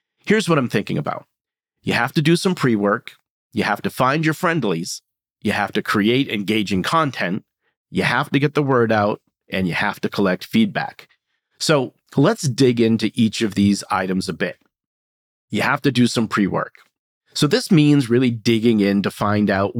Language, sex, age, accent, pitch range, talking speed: English, male, 40-59, American, 105-135 Hz, 185 wpm